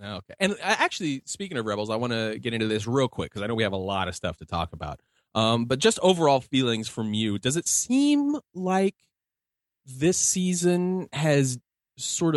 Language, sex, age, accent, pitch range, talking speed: English, male, 30-49, American, 100-145 Hz, 200 wpm